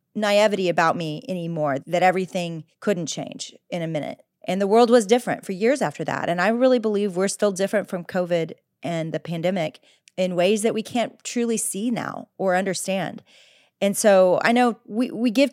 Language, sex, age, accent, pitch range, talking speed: English, female, 30-49, American, 175-230 Hz, 190 wpm